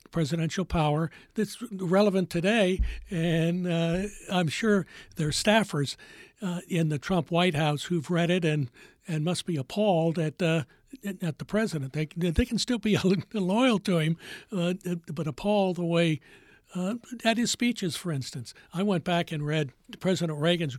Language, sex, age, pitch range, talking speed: English, male, 60-79, 165-200 Hz, 165 wpm